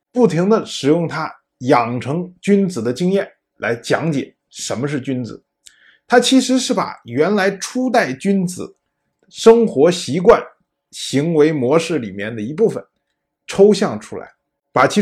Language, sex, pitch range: Chinese, male, 120-200 Hz